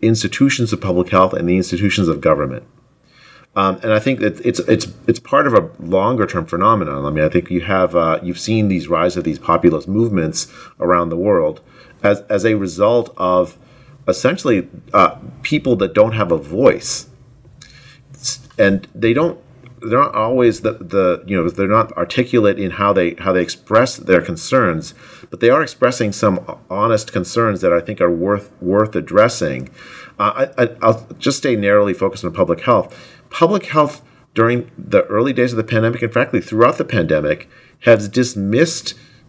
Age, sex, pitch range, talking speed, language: 40-59, male, 95-120 Hz, 175 wpm, English